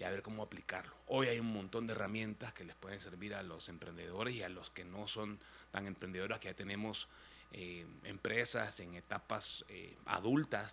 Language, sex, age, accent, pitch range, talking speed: Spanish, male, 30-49, Mexican, 105-130 Hz, 195 wpm